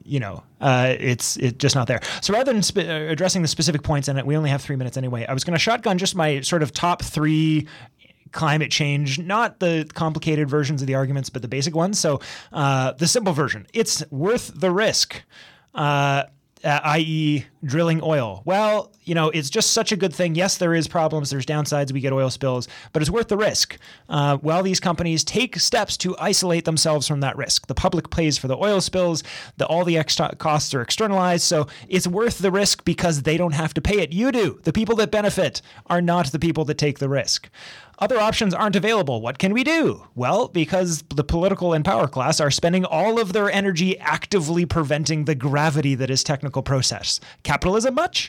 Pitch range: 140-185 Hz